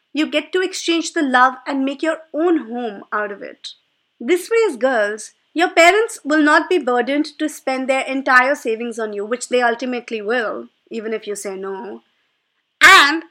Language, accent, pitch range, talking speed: English, Indian, 230-320 Hz, 185 wpm